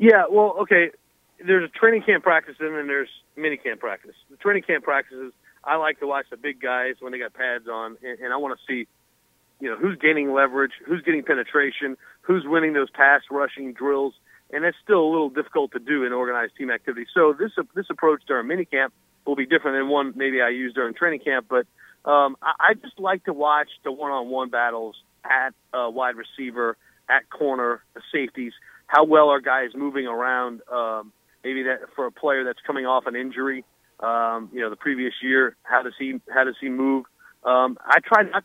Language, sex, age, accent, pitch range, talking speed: English, male, 40-59, American, 130-165 Hz, 210 wpm